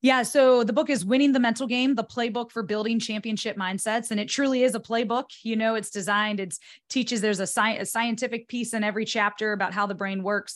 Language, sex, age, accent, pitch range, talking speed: English, female, 20-39, American, 190-215 Hz, 225 wpm